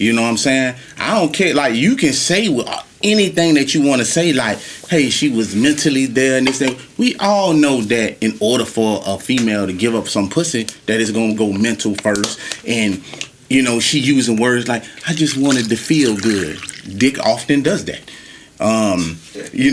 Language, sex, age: English, male, 30-49